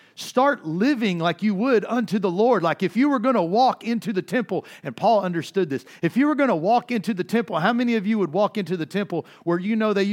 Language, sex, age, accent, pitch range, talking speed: English, male, 50-69, American, 160-220 Hz, 260 wpm